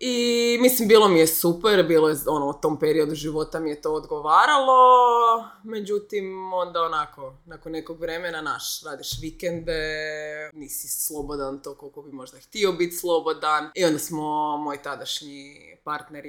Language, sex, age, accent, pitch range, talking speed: Croatian, female, 20-39, native, 155-215 Hz, 145 wpm